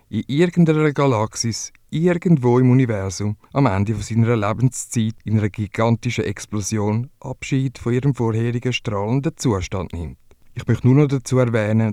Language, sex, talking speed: English, male, 135 wpm